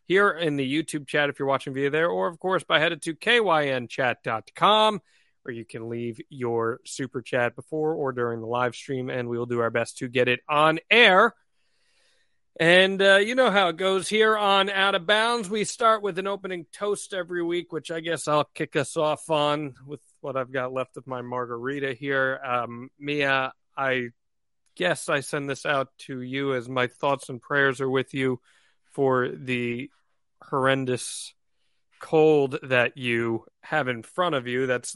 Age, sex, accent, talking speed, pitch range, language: 40-59, male, American, 185 wpm, 125-155 Hz, English